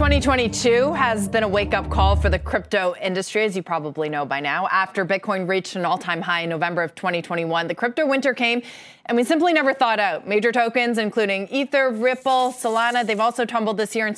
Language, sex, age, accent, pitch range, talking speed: English, female, 30-49, American, 200-255 Hz, 205 wpm